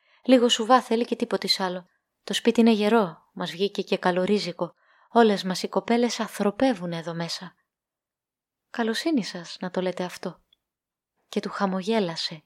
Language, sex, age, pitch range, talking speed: Greek, female, 20-39, 185-245 Hz, 145 wpm